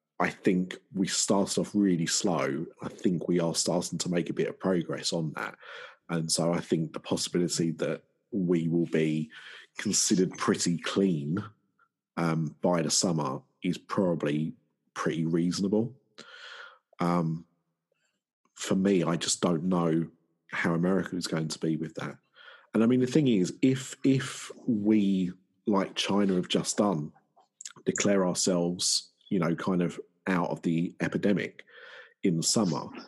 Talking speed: 150 wpm